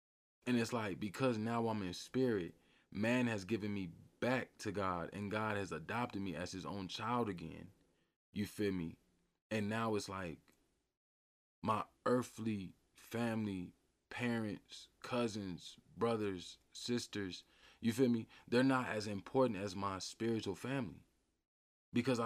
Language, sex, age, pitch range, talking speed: English, male, 20-39, 95-115 Hz, 135 wpm